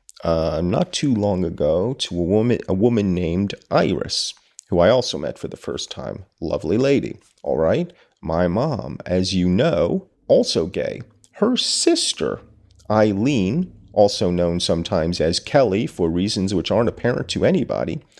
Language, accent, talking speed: English, American, 150 wpm